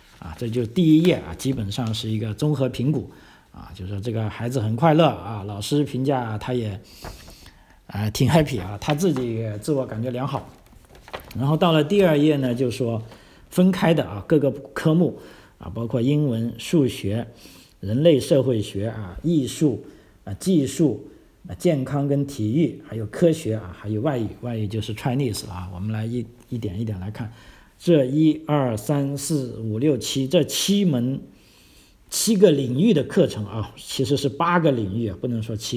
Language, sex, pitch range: Chinese, male, 105-145 Hz